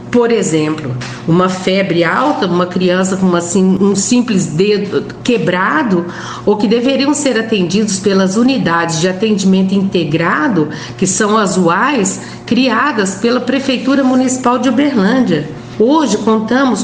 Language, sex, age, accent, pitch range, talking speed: Portuguese, female, 50-69, Brazilian, 190-255 Hz, 120 wpm